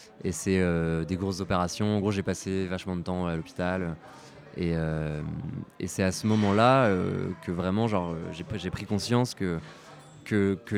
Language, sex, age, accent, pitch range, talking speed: French, male, 20-39, French, 90-110 Hz, 185 wpm